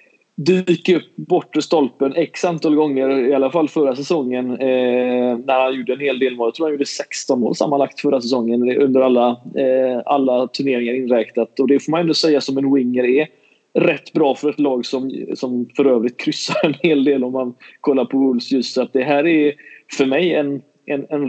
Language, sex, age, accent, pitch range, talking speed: Swedish, male, 20-39, native, 125-145 Hz, 210 wpm